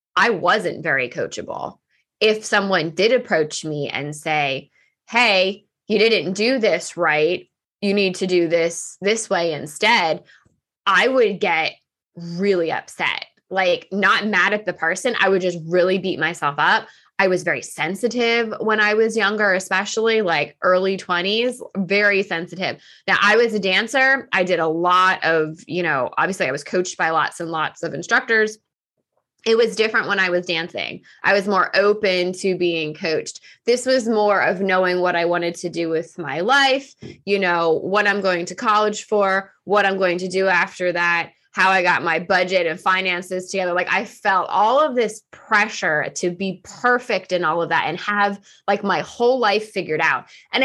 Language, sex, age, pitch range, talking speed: English, female, 20-39, 170-210 Hz, 180 wpm